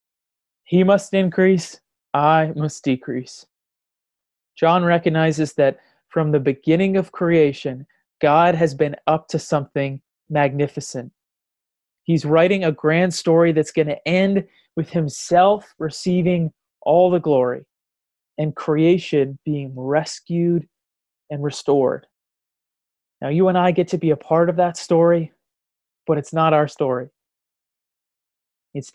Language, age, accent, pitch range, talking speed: English, 30-49, American, 140-170 Hz, 125 wpm